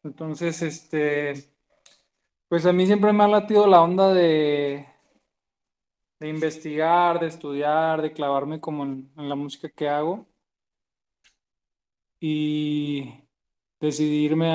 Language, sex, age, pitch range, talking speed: Spanish, male, 20-39, 145-170 Hz, 110 wpm